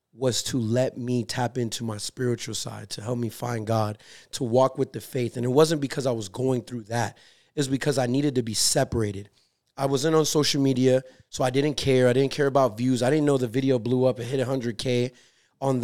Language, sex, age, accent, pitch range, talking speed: English, male, 30-49, American, 115-140 Hz, 240 wpm